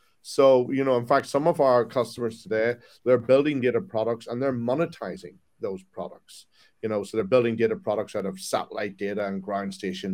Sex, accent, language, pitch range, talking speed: male, Irish, English, 105-140 Hz, 195 wpm